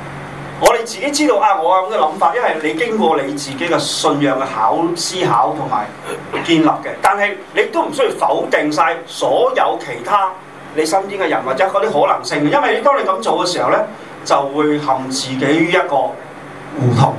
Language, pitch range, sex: Chinese, 135-165 Hz, male